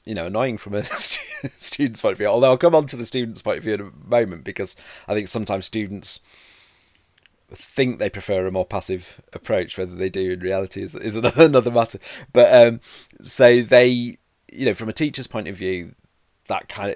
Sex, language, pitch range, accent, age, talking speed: male, English, 95-115 Hz, British, 30-49, 200 wpm